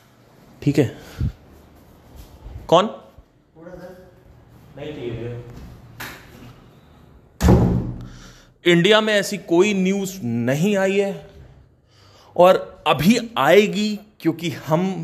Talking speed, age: 70 wpm, 30-49